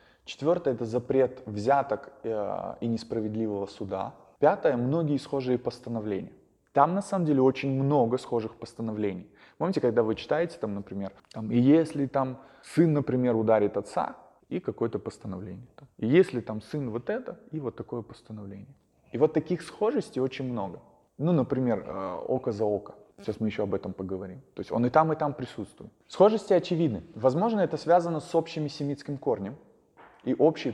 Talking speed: 155 wpm